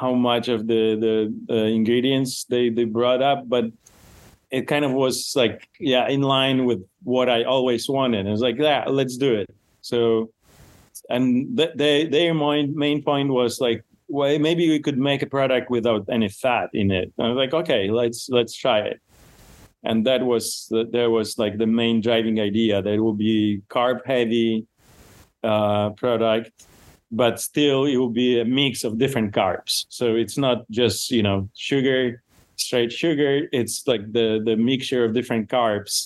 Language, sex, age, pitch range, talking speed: English, male, 30-49, 105-125 Hz, 180 wpm